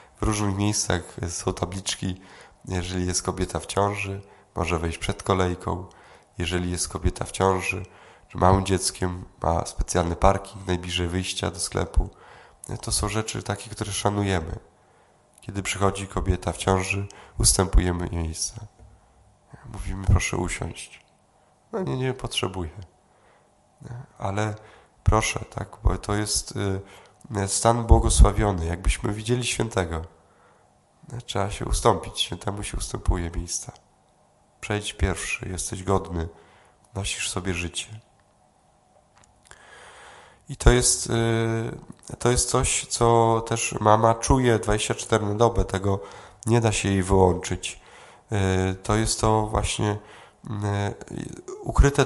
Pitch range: 90-110 Hz